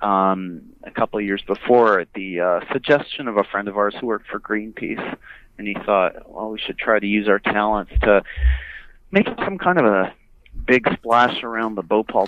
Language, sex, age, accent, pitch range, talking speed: English, male, 30-49, American, 95-115 Hz, 200 wpm